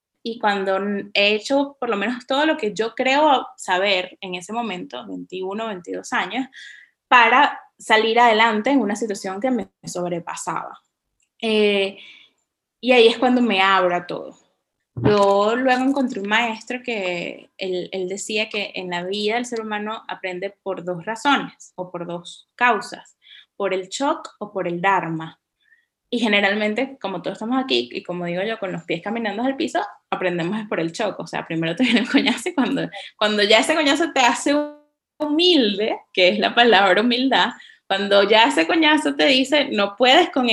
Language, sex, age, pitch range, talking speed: Spanish, female, 10-29, 195-275 Hz, 175 wpm